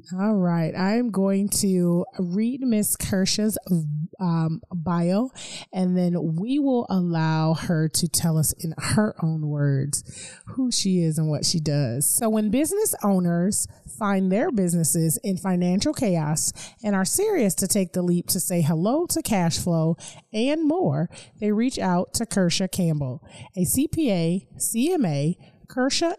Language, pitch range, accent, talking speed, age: English, 160-215 Hz, American, 145 wpm, 30-49